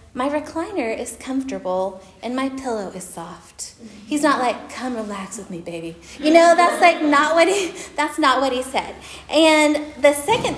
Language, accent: English, American